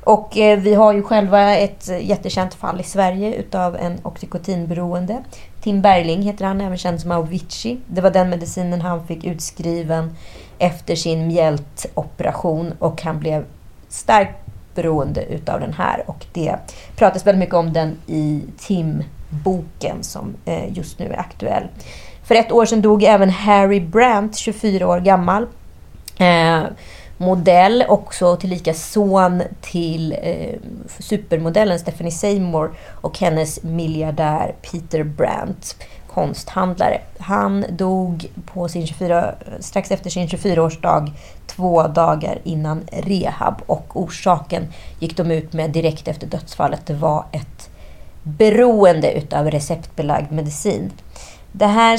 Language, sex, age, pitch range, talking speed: Swedish, female, 30-49, 165-200 Hz, 130 wpm